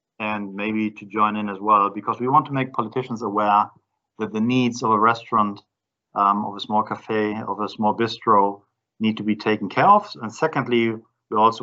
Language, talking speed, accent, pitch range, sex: English, 200 wpm, German, 105-120 Hz, male